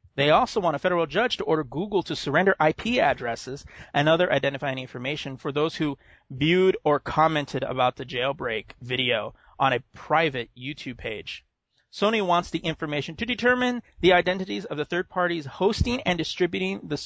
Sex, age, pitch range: male, 30-49, 125-160 Hz